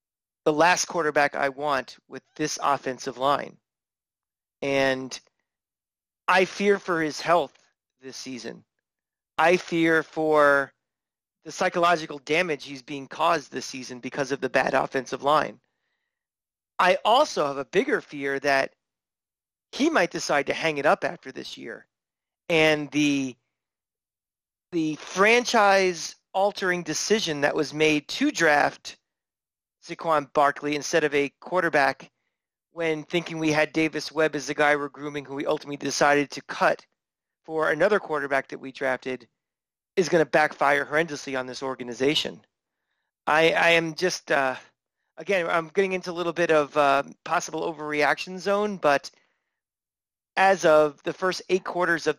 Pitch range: 140-170 Hz